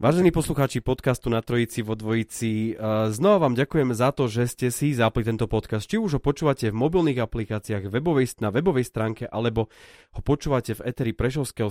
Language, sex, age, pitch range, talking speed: Slovak, male, 30-49, 110-130 Hz, 185 wpm